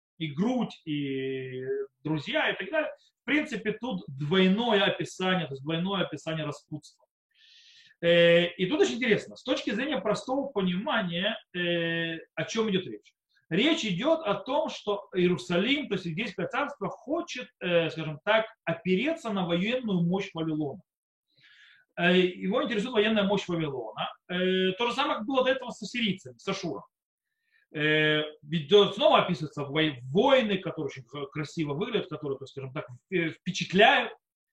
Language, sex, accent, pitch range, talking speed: Russian, male, native, 170-250 Hz, 130 wpm